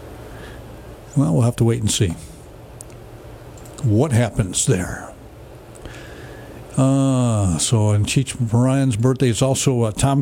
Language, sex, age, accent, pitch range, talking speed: English, male, 60-79, American, 110-140 Hz, 115 wpm